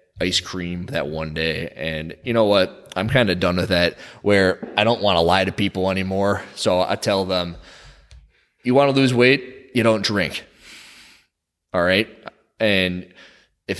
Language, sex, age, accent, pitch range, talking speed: English, male, 20-39, American, 90-115 Hz, 175 wpm